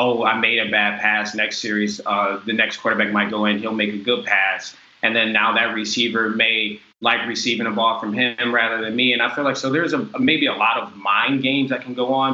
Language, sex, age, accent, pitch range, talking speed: English, male, 20-39, American, 120-140 Hz, 255 wpm